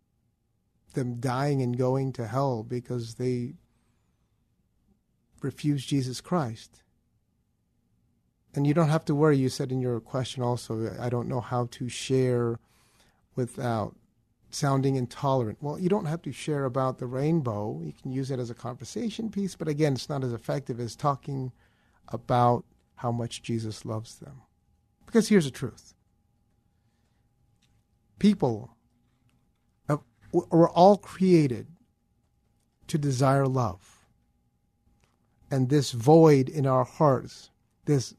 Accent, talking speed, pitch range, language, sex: American, 125 wpm, 115-155 Hz, English, male